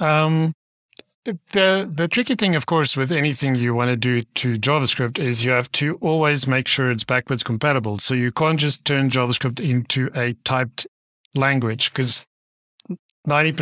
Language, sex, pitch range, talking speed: English, male, 125-150 Hz, 160 wpm